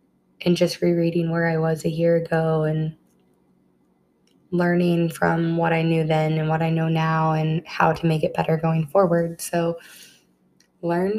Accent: American